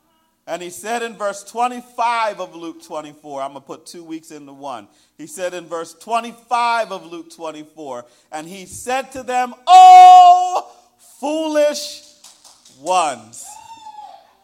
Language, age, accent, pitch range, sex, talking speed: English, 50-69, American, 235-315 Hz, male, 140 wpm